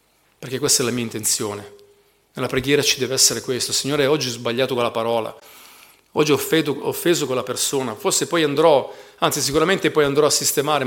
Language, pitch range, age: Italian, 130-190 Hz, 40-59